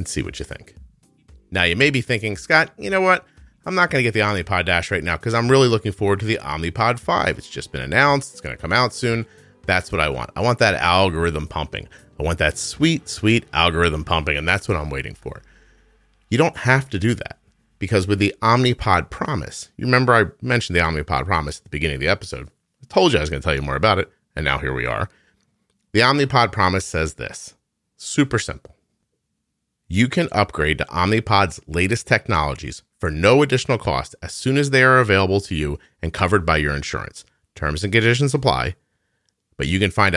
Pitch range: 80-120 Hz